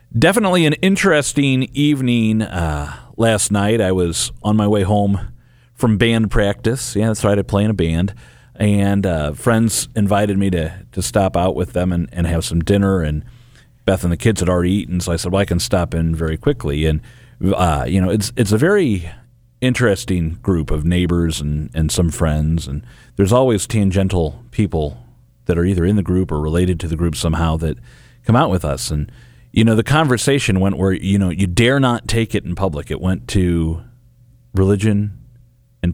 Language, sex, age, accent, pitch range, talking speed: English, male, 40-59, American, 85-115 Hz, 195 wpm